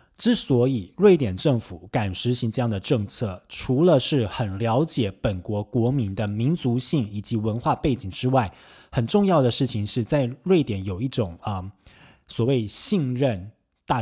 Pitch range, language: 105-140 Hz, Chinese